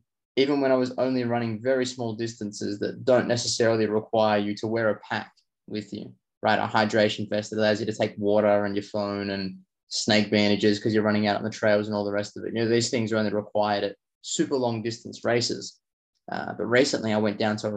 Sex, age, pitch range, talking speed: male, 20-39, 105-120 Hz, 235 wpm